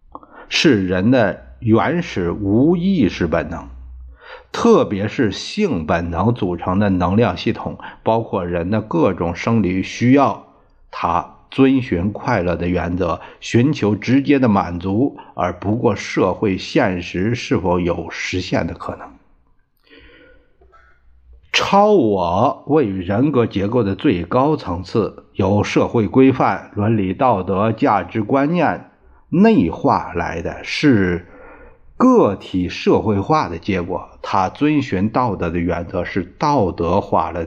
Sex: male